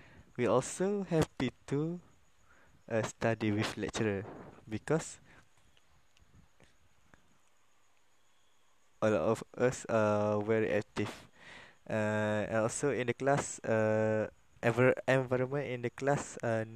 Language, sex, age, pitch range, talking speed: Malay, male, 20-39, 100-120 Hz, 95 wpm